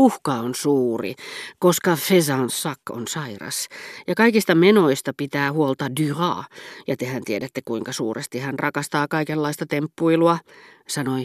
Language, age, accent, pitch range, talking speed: Finnish, 40-59, native, 125-165 Hz, 125 wpm